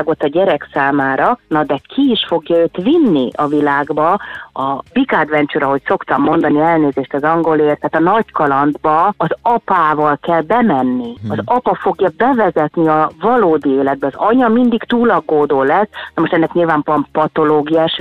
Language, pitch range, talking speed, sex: Hungarian, 145-195 Hz, 155 wpm, female